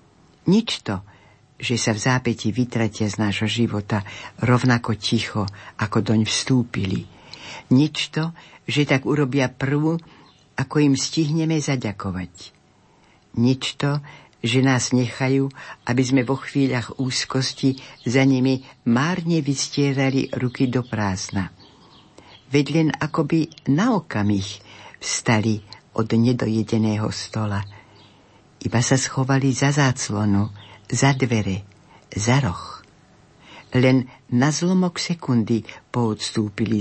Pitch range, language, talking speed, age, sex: 110-135 Hz, Slovak, 110 wpm, 60-79, female